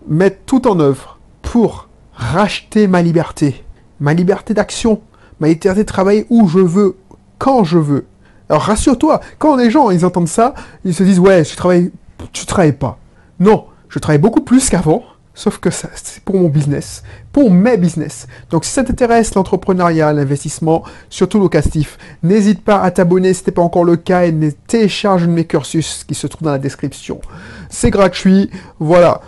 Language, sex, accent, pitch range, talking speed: French, male, French, 150-210 Hz, 180 wpm